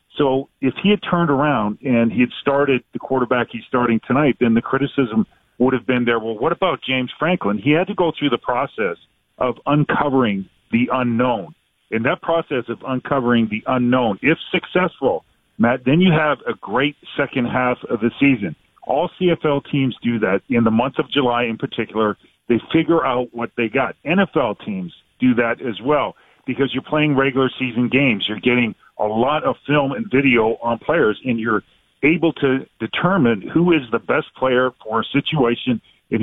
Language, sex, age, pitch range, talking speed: English, male, 40-59, 120-140 Hz, 185 wpm